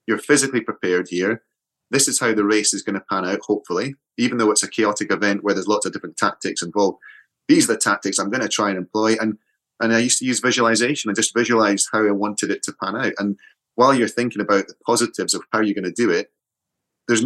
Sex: male